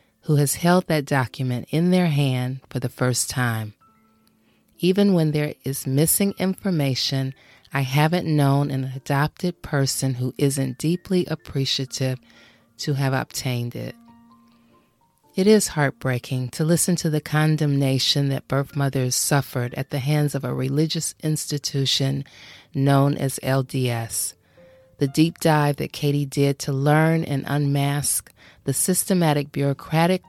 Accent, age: American, 30-49